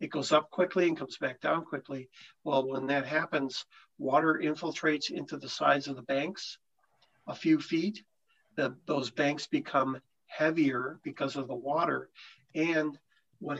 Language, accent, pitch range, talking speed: English, American, 135-160 Hz, 150 wpm